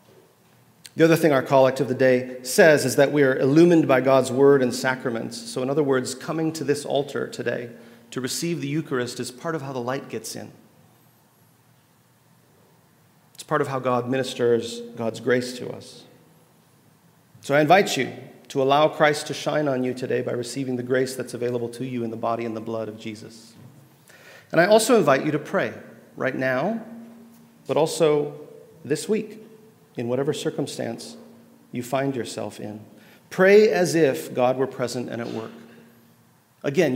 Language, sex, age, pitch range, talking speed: English, male, 40-59, 125-165 Hz, 175 wpm